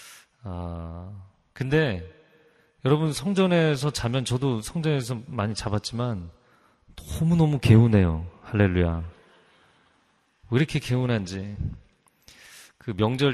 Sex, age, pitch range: male, 30-49, 95-135 Hz